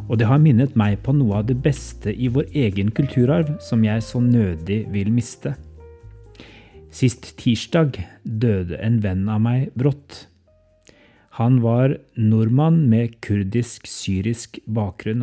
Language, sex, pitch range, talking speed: English, male, 105-125 Hz, 135 wpm